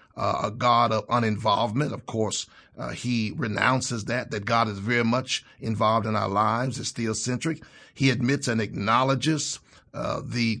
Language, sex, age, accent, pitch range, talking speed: English, male, 50-69, American, 110-140 Hz, 160 wpm